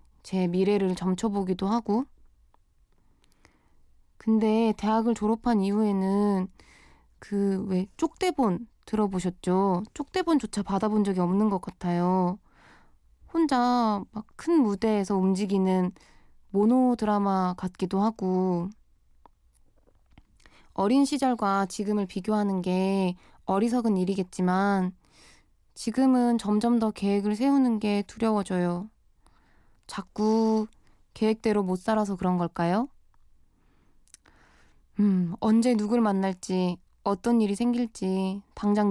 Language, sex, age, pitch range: Korean, female, 20-39, 185-220 Hz